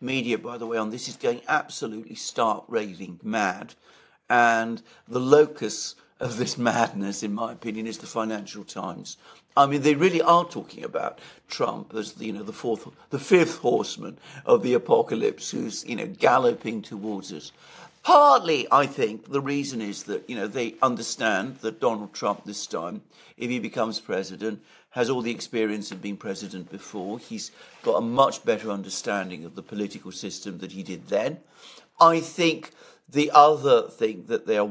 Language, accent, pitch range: English, British, 105-165 Hz